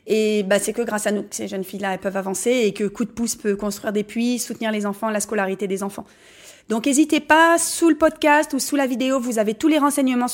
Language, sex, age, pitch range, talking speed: French, female, 30-49, 220-285 Hz, 260 wpm